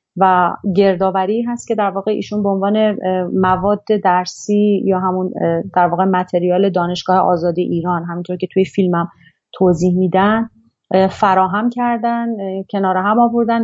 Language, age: Persian, 30-49